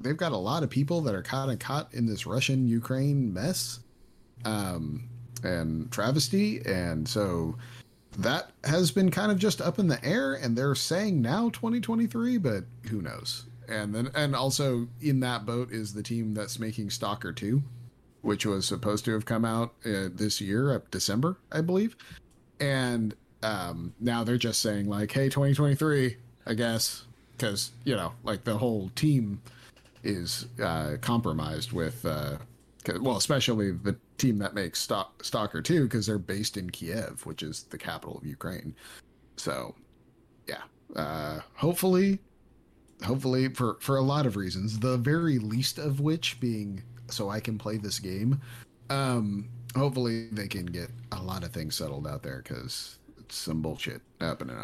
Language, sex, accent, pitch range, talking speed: English, male, American, 105-135 Hz, 165 wpm